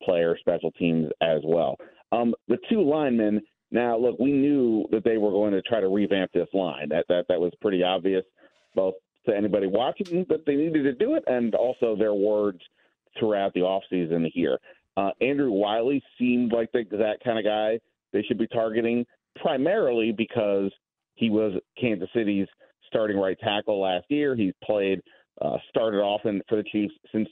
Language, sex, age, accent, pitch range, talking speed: English, male, 40-59, American, 100-125 Hz, 180 wpm